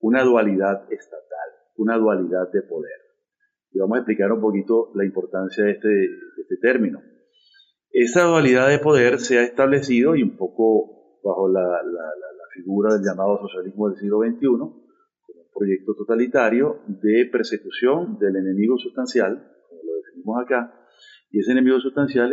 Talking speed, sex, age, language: 155 wpm, male, 40-59, Spanish